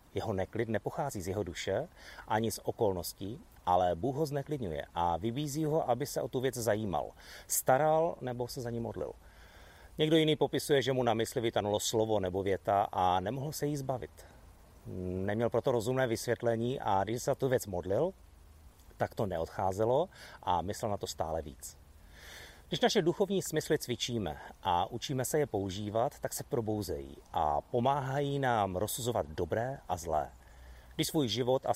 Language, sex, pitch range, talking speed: Czech, male, 90-135 Hz, 165 wpm